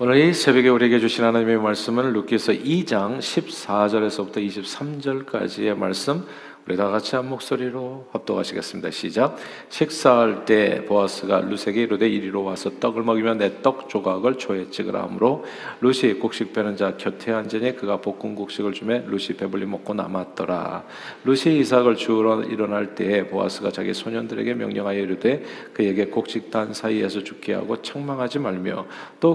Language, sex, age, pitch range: Korean, male, 40-59, 100-125 Hz